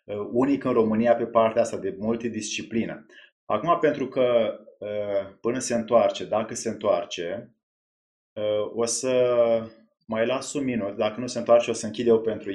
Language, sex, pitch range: Romanian, male, 110-130 Hz